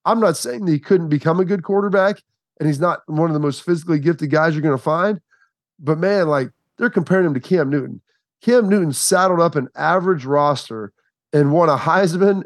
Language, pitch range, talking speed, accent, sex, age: English, 135-170 Hz, 210 wpm, American, male, 30-49